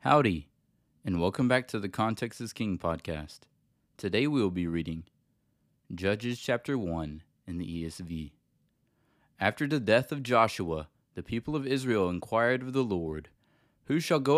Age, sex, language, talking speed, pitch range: 20-39, male, English, 155 wpm, 90-130 Hz